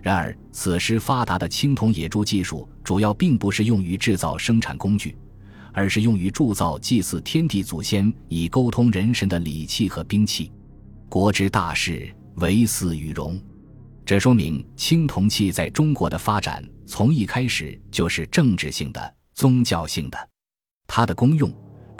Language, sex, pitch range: Chinese, male, 90-115 Hz